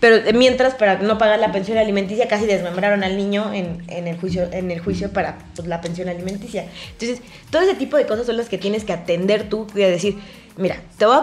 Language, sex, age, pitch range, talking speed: Spanish, female, 20-39, 190-245 Hz, 230 wpm